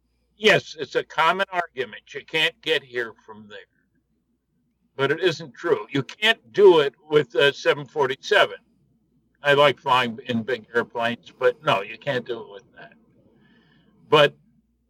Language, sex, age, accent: English, male, 60-79, American